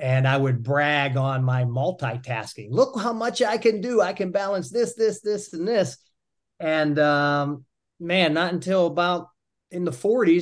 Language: English